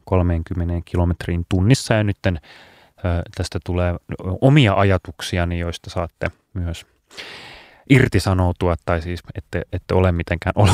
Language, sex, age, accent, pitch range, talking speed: Finnish, male, 30-49, native, 85-105 Hz, 105 wpm